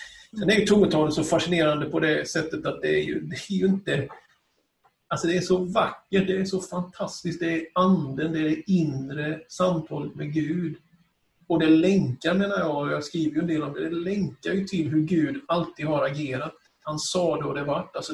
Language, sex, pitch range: Swedish, male, 150-175 Hz